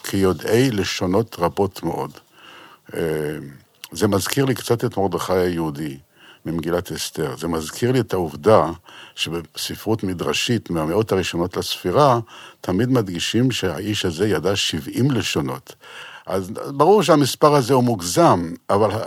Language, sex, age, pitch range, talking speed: Hebrew, male, 60-79, 100-145 Hz, 120 wpm